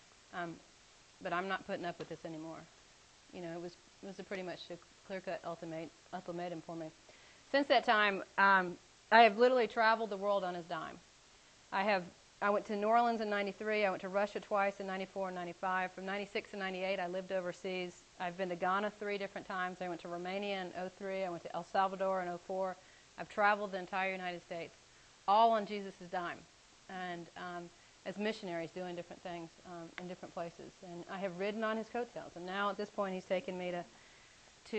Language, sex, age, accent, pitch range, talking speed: English, female, 30-49, American, 175-205 Hz, 210 wpm